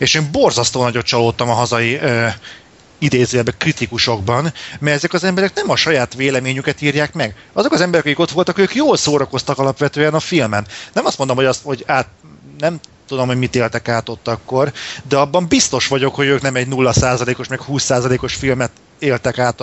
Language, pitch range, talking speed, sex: Hungarian, 120-150 Hz, 185 wpm, male